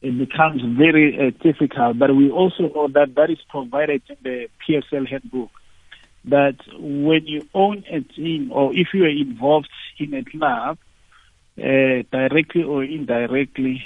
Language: English